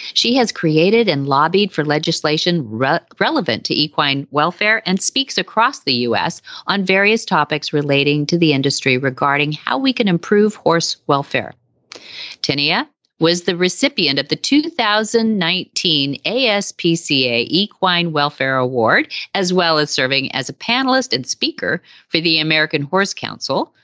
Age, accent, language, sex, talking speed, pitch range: 40-59, American, English, female, 140 wpm, 145-205 Hz